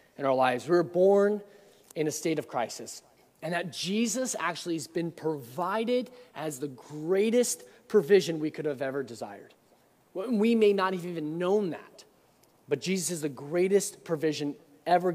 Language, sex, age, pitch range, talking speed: English, male, 20-39, 150-195 Hz, 160 wpm